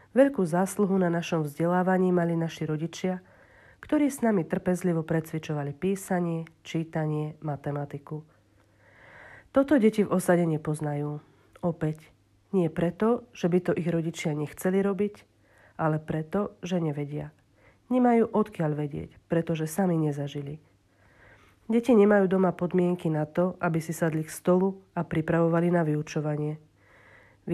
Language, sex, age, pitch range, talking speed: Slovak, female, 40-59, 150-185 Hz, 125 wpm